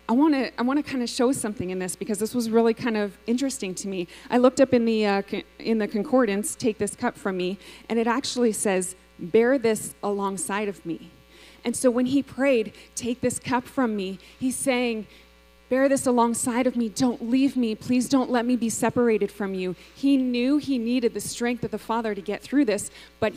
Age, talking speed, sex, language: 20-39, 215 wpm, female, English